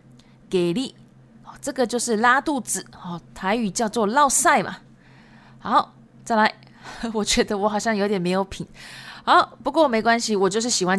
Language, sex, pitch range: Japanese, female, 175-265 Hz